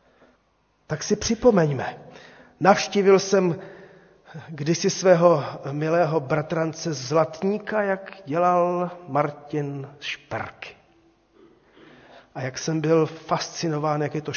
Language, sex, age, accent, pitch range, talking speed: Czech, male, 40-59, native, 150-190 Hz, 90 wpm